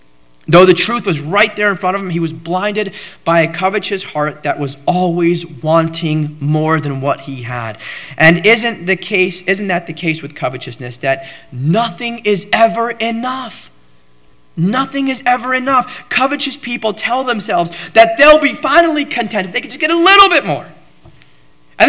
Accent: American